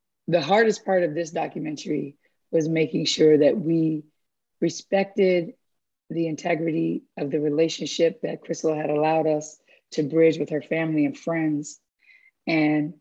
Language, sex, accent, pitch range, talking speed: English, female, American, 150-175 Hz, 140 wpm